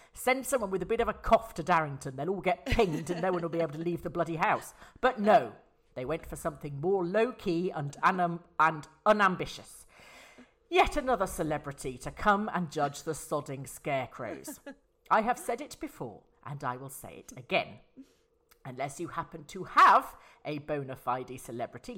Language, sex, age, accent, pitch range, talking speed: English, female, 40-59, British, 155-235 Hz, 175 wpm